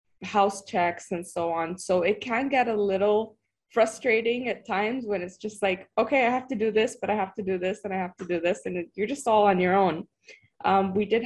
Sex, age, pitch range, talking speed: female, 20-39, 170-200 Hz, 250 wpm